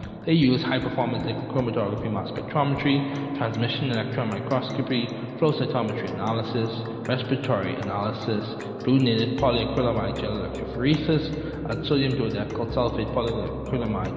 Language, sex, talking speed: English, male, 100 wpm